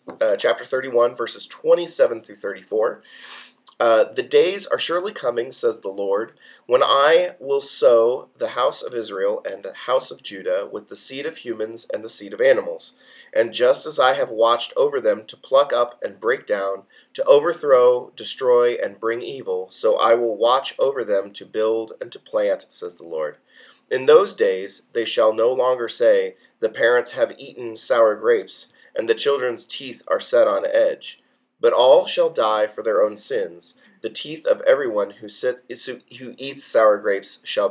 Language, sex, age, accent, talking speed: English, male, 30-49, American, 180 wpm